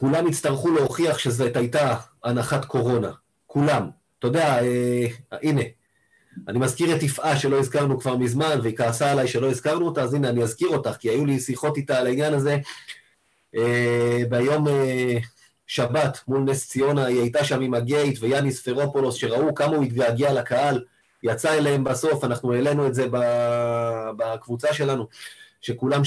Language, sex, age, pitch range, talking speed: Hebrew, male, 30-49, 125-145 Hz, 160 wpm